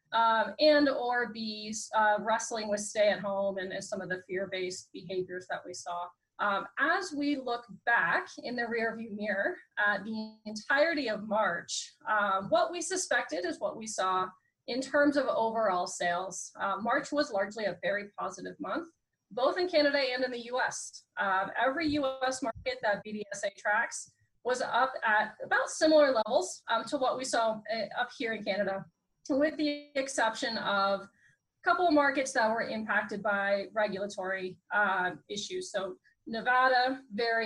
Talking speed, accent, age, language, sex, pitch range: 165 wpm, American, 30-49, English, female, 205-270 Hz